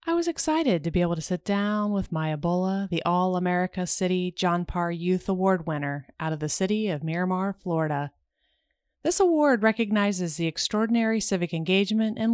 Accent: American